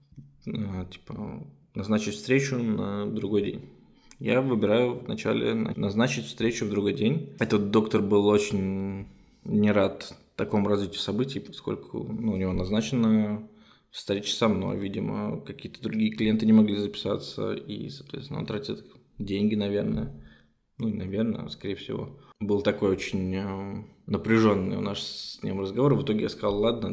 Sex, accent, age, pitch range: male, native, 20-39, 95-110 Hz